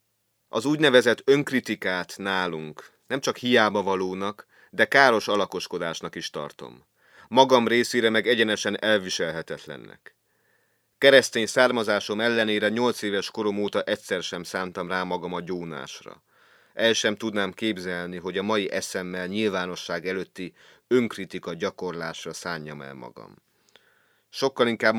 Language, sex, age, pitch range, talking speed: Hungarian, male, 30-49, 90-110 Hz, 115 wpm